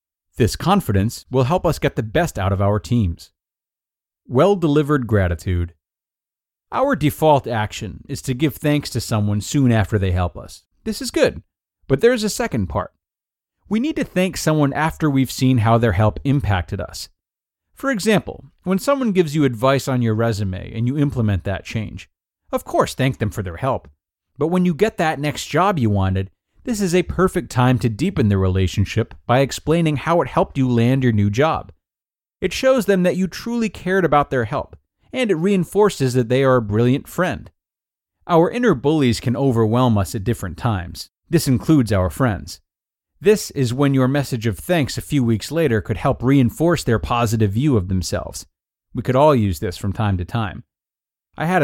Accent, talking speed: American, 185 wpm